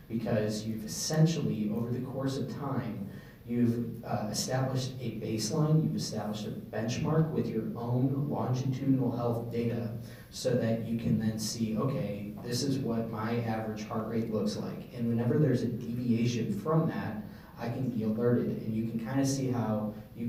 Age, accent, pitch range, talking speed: 30-49, American, 105-120 Hz, 170 wpm